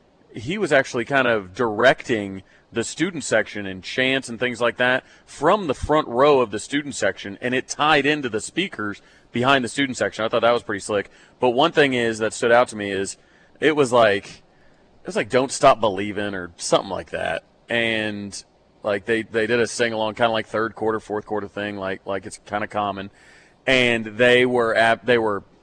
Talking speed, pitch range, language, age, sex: 210 wpm, 105-125 Hz, English, 30-49, male